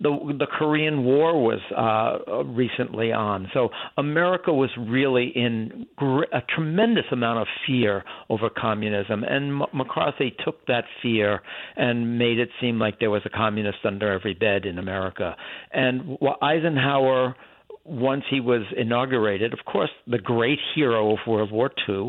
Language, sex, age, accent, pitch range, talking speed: English, male, 60-79, American, 110-135 Hz, 150 wpm